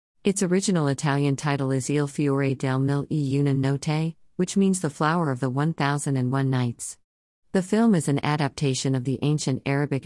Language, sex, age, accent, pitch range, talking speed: English, female, 50-69, American, 130-160 Hz, 190 wpm